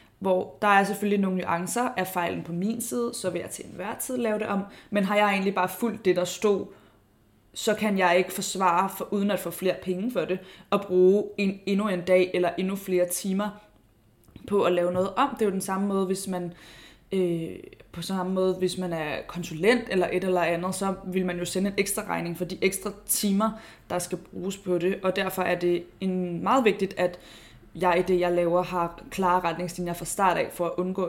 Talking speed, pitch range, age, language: 225 wpm, 180-200 Hz, 20-39, Danish